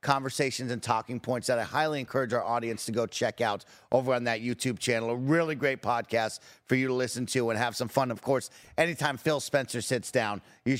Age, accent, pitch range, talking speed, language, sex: 40-59, American, 120-150 Hz, 220 wpm, English, male